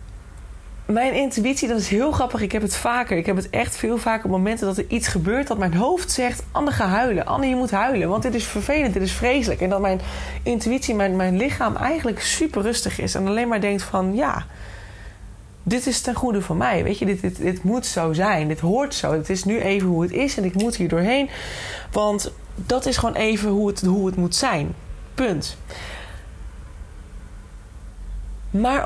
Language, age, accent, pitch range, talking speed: Dutch, 20-39, Dutch, 185-235 Hz, 205 wpm